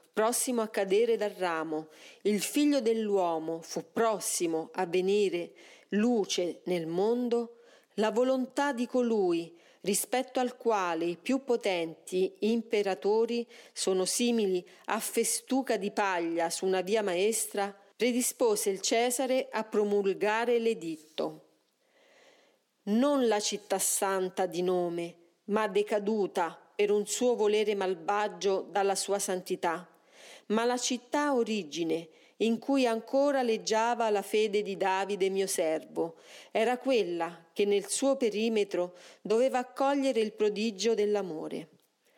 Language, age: Italian, 40-59